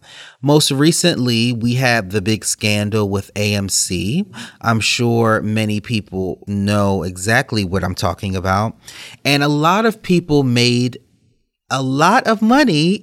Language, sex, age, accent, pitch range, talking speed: English, male, 30-49, American, 110-150 Hz, 135 wpm